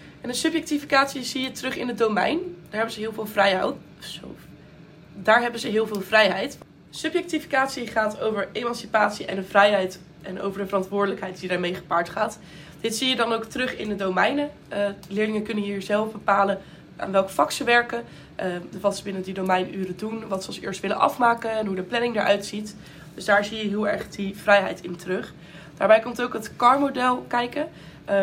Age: 20-39